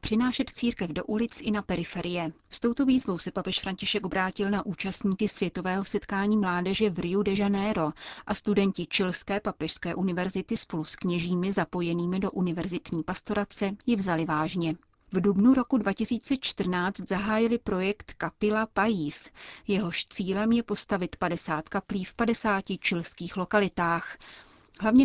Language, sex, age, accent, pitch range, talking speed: Czech, female, 30-49, native, 180-215 Hz, 135 wpm